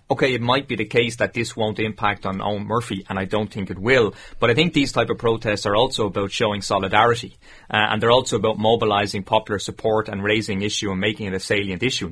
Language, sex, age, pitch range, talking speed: English, male, 30-49, 100-115 Hz, 240 wpm